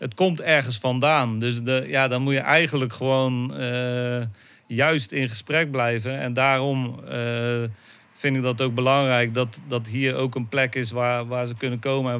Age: 40-59